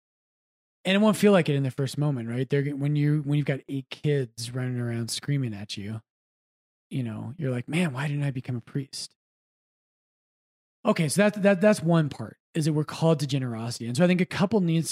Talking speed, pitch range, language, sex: 225 wpm, 120-160 Hz, English, male